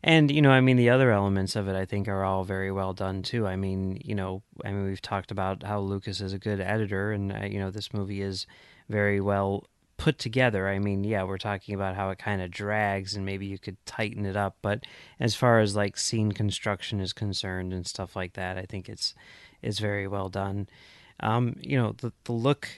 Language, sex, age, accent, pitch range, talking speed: English, male, 30-49, American, 100-115 Hz, 230 wpm